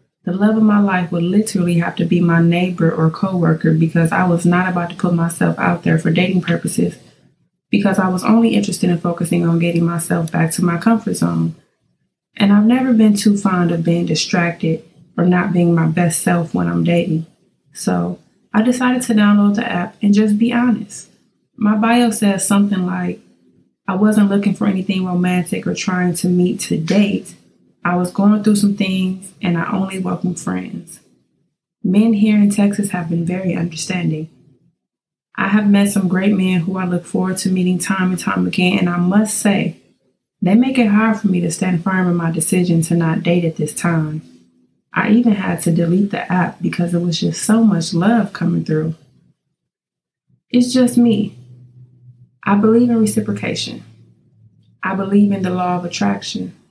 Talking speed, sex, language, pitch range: 185 wpm, female, English, 170-205 Hz